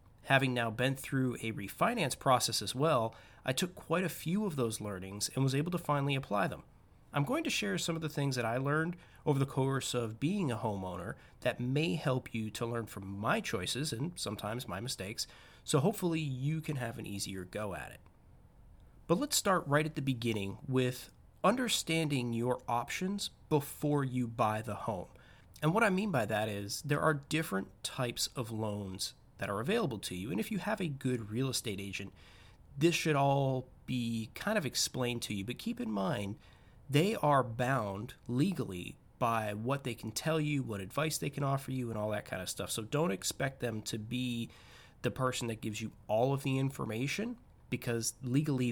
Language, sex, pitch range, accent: English, male, 110-145 Hz, American